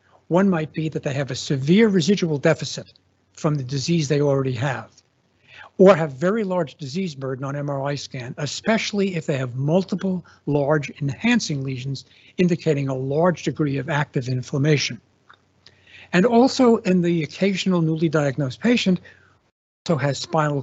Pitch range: 130-170 Hz